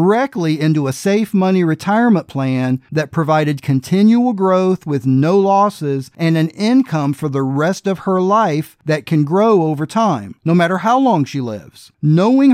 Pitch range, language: 140-200 Hz, English